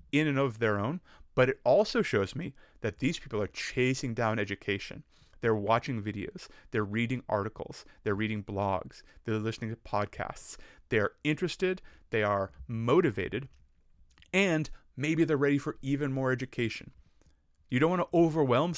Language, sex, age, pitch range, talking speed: English, male, 30-49, 110-150 Hz, 155 wpm